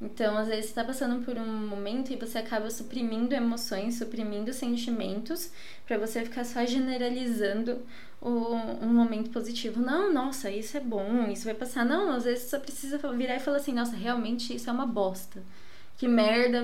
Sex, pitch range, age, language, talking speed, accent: female, 205-240 Hz, 20-39, Portuguese, 180 wpm, Brazilian